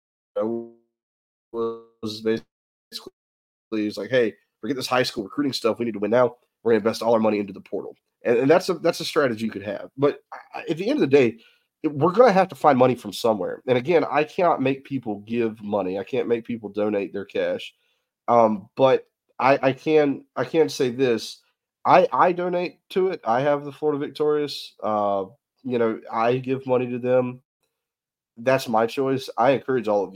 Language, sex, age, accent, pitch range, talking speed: English, male, 30-49, American, 105-135 Hz, 195 wpm